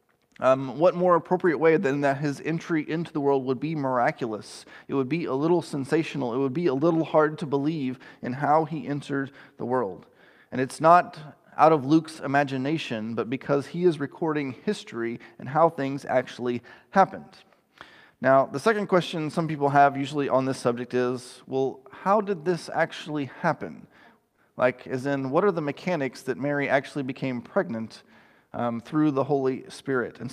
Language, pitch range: English, 130-160 Hz